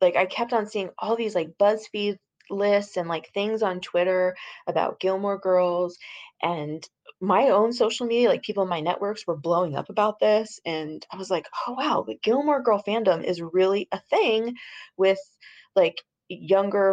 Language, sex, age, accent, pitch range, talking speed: English, female, 20-39, American, 165-205 Hz, 175 wpm